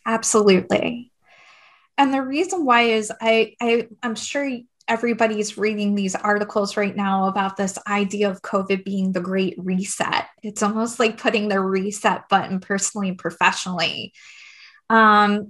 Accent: American